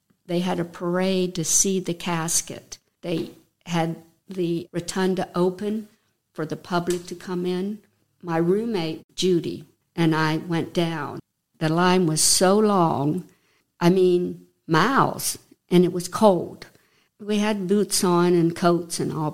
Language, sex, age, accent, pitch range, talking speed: English, female, 60-79, American, 165-195 Hz, 145 wpm